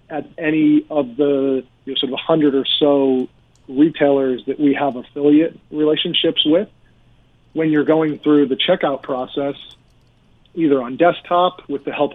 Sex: male